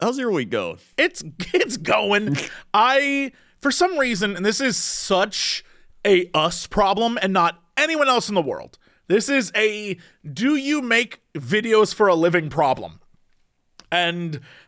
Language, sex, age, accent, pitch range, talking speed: English, male, 30-49, American, 175-235 Hz, 150 wpm